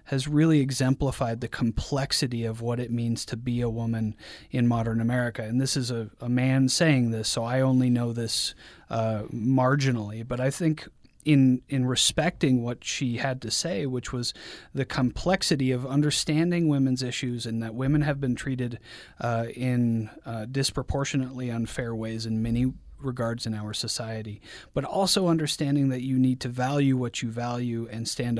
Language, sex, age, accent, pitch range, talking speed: English, male, 30-49, American, 115-140 Hz, 175 wpm